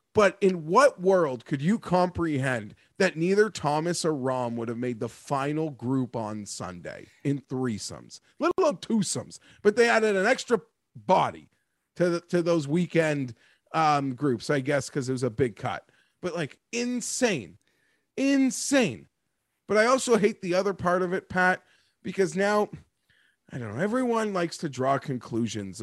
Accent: American